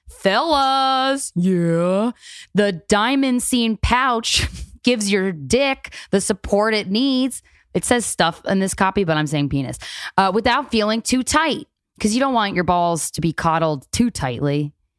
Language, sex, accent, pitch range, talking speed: English, female, American, 170-245 Hz, 155 wpm